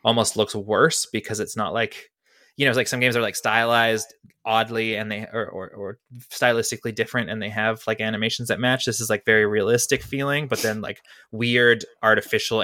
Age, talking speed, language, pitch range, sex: 20-39, 205 wpm, English, 110-125 Hz, male